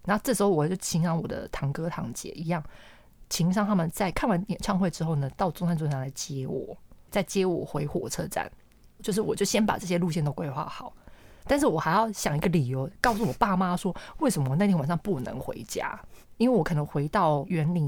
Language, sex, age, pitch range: Chinese, female, 20-39, 155-205 Hz